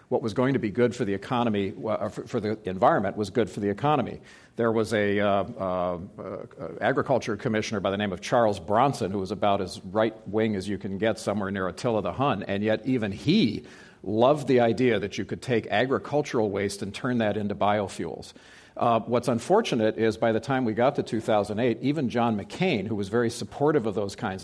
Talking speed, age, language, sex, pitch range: 210 wpm, 50-69, English, male, 100-115 Hz